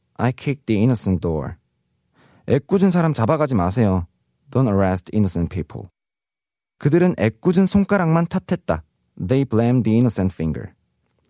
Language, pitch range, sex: Korean, 105-160 Hz, male